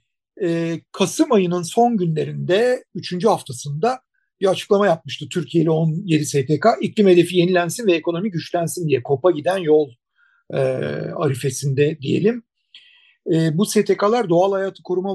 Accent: native